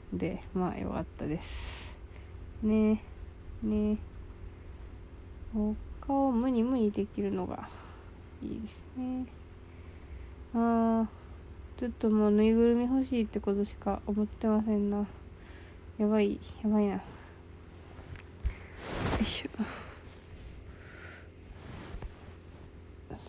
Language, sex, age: Japanese, female, 20-39